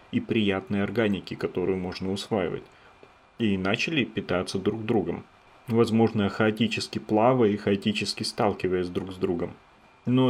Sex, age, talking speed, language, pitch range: male, 30-49, 120 wpm, Russian, 95-115 Hz